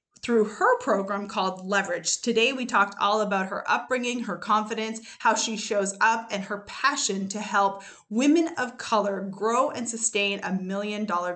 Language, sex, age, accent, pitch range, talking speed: English, female, 20-39, American, 190-230 Hz, 165 wpm